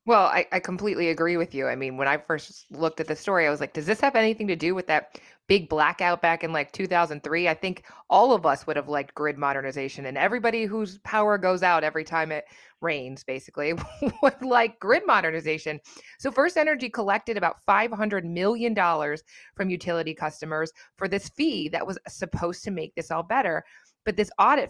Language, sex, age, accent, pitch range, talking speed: English, female, 20-39, American, 155-200 Hz, 205 wpm